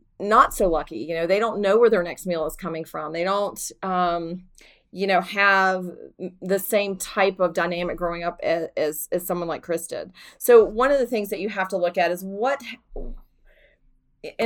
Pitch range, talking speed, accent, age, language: 175-210 Hz, 200 wpm, American, 30-49, English